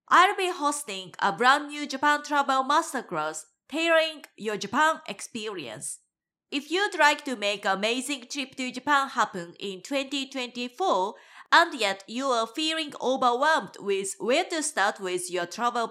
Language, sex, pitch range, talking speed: English, female, 195-295 Hz, 145 wpm